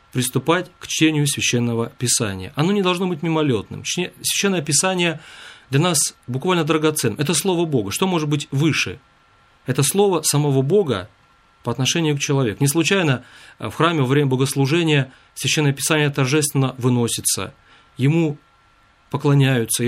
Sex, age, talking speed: male, 30-49, 135 wpm